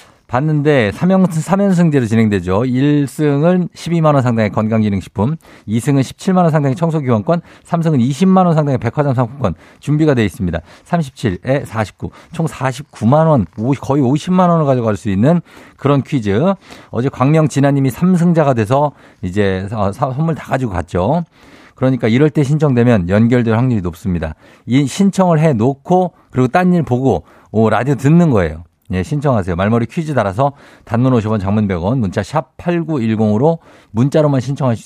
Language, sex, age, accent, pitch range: Korean, male, 50-69, native, 105-150 Hz